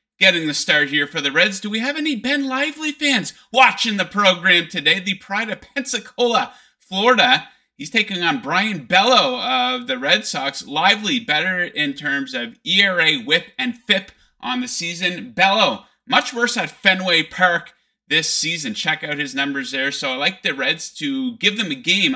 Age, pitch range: 30-49, 170-255 Hz